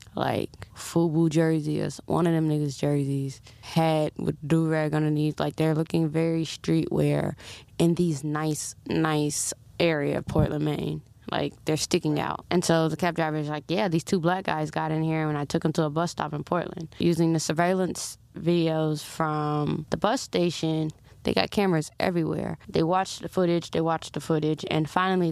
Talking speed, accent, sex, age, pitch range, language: 180 wpm, American, female, 20-39, 150-180 Hz, English